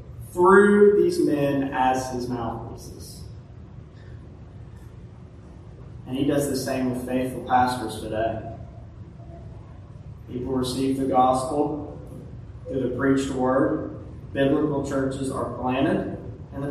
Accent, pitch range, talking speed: American, 120-160 Hz, 105 wpm